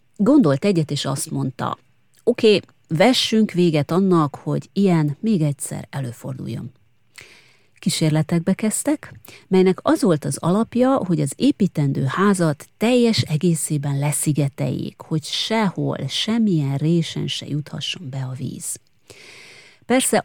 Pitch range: 145-195 Hz